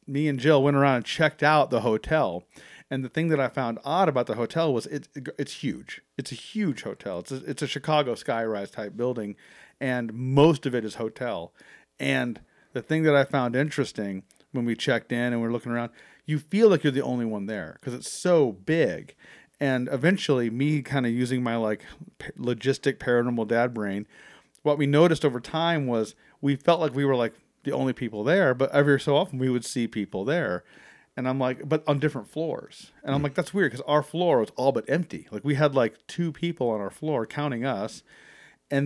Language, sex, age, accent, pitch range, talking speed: English, male, 40-59, American, 120-145 Hz, 210 wpm